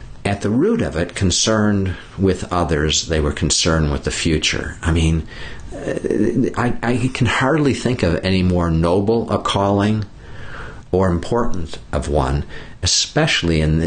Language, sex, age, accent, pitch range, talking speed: English, male, 50-69, American, 80-105 Hz, 145 wpm